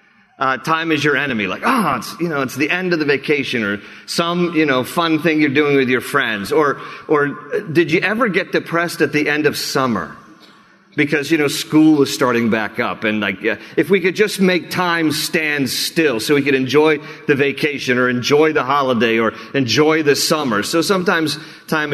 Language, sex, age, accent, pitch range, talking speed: English, male, 40-59, American, 130-155 Hz, 200 wpm